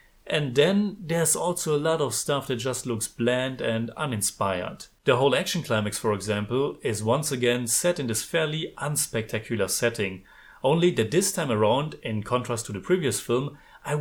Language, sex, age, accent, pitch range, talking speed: English, male, 30-49, German, 115-160 Hz, 175 wpm